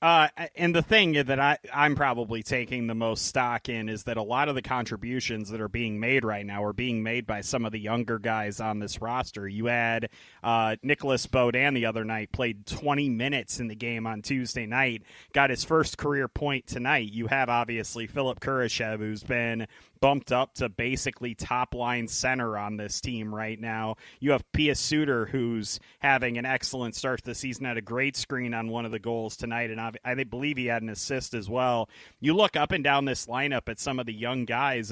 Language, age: English, 30-49